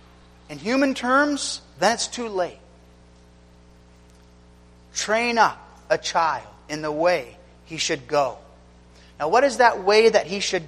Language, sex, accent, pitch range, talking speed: English, male, American, 150-235 Hz, 140 wpm